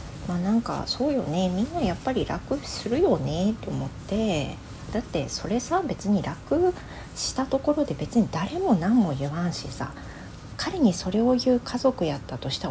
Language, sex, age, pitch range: Japanese, female, 40-59, 150-245 Hz